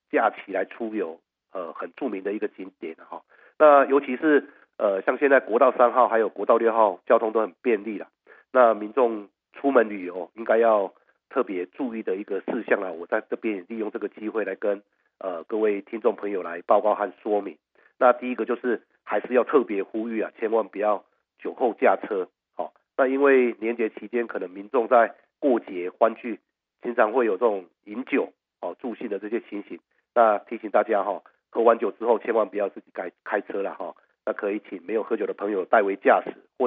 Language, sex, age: Chinese, male, 50-69